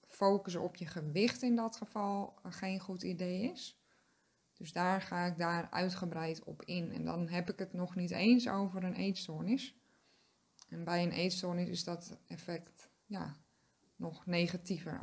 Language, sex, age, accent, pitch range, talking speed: Dutch, female, 20-39, Dutch, 175-210 Hz, 160 wpm